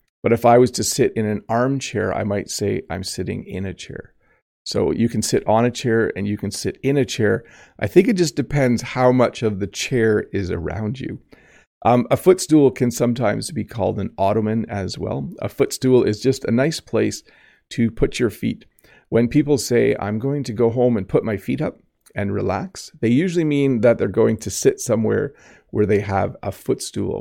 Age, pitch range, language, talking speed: 40-59, 100-120 Hz, English, 210 wpm